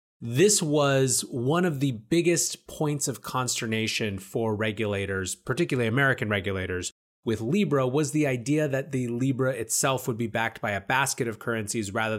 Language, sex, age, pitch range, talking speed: English, male, 30-49, 110-140 Hz, 160 wpm